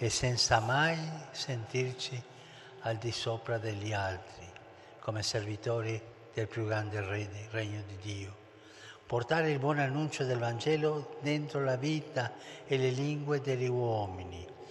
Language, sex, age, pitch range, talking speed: Italian, male, 60-79, 105-125 Hz, 125 wpm